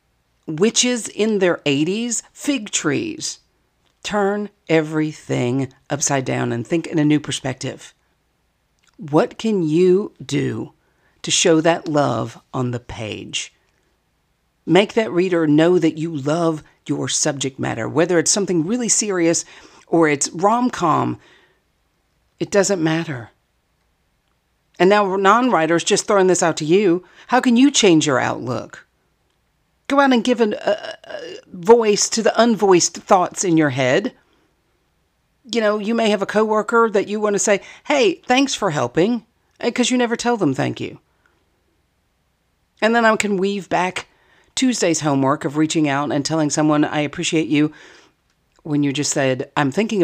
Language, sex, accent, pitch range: English, female, American, 145-210 Hz